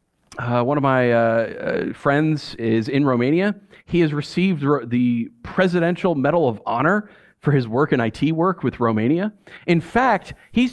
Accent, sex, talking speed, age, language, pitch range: American, male, 160 wpm, 40-59, English, 135-200 Hz